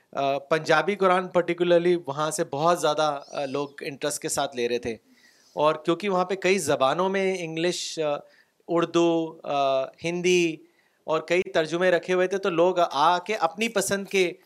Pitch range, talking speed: 155-190 Hz, 155 wpm